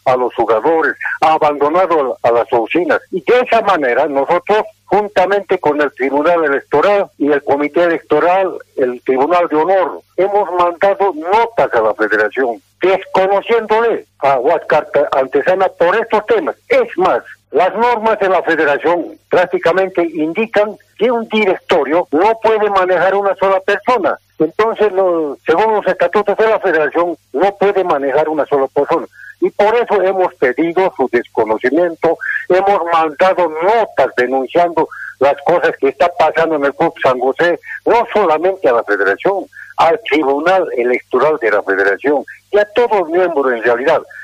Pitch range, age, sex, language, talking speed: 160-215 Hz, 60-79, male, Spanish, 150 wpm